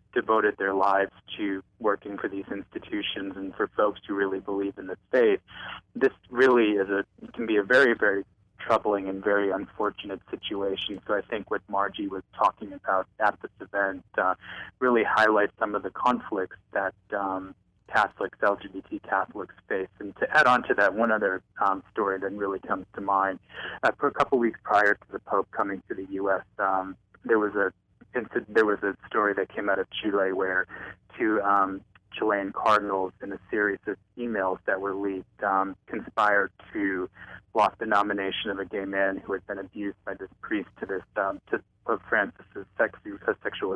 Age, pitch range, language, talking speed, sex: 20-39, 95-105 Hz, English, 185 wpm, male